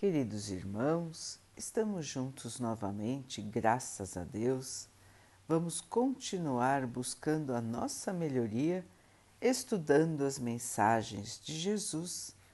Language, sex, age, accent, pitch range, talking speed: Portuguese, female, 60-79, Brazilian, 110-160 Hz, 90 wpm